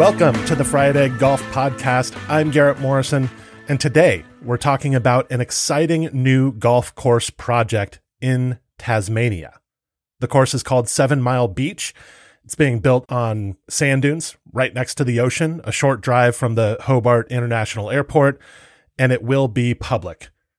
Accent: American